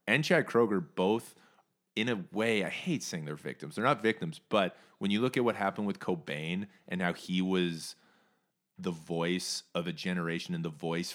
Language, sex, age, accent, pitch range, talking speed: English, male, 30-49, American, 85-110 Hz, 195 wpm